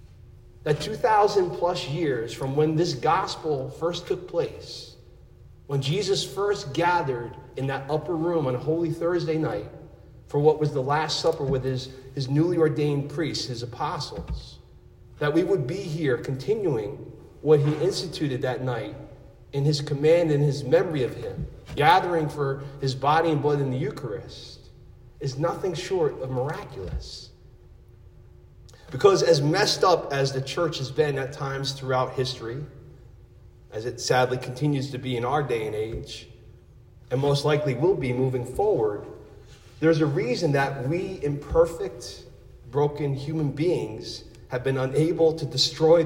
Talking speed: 150 wpm